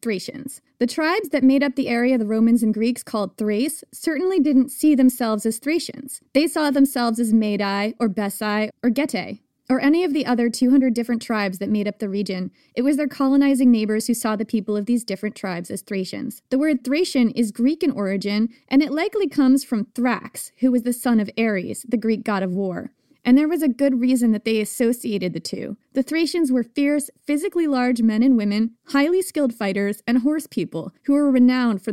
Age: 20-39